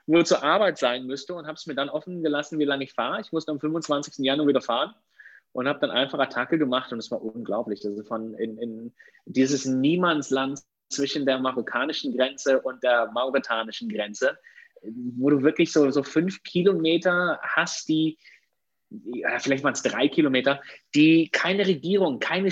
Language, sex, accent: German, male, German